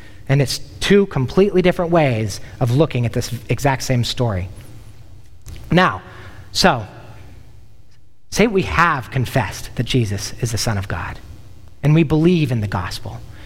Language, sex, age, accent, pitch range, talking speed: English, male, 30-49, American, 105-150 Hz, 145 wpm